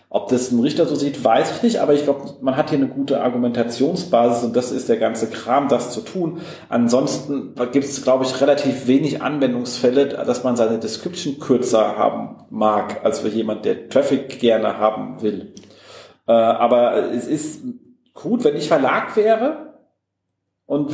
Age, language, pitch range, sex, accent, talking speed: 40-59, German, 120-155 Hz, male, German, 170 wpm